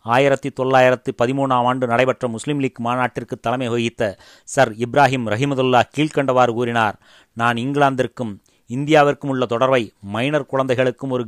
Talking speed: 115 wpm